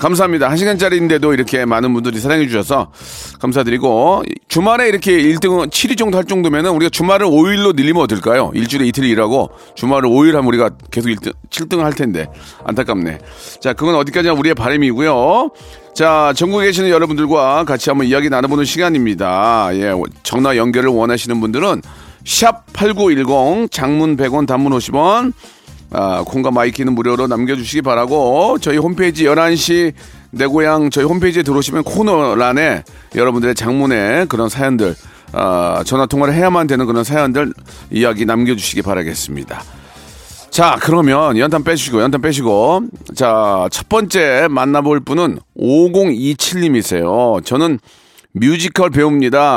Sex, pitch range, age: male, 120-165 Hz, 40-59